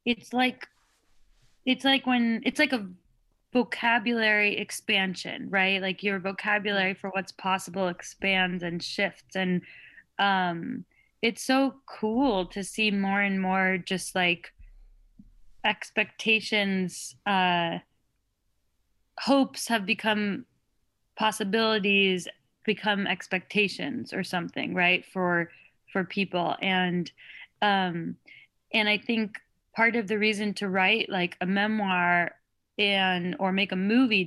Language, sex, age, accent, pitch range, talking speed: English, female, 20-39, American, 185-215 Hz, 115 wpm